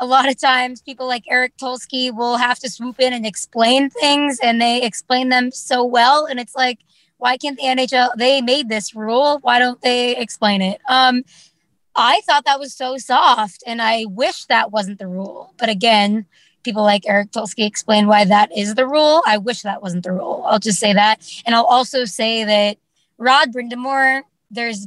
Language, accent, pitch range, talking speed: English, American, 205-255 Hz, 200 wpm